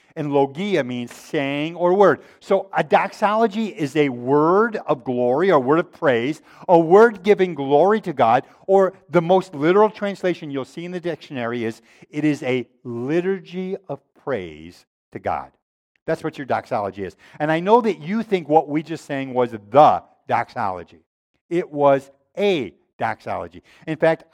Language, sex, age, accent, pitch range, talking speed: English, male, 50-69, American, 140-185 Hz, 165 wpm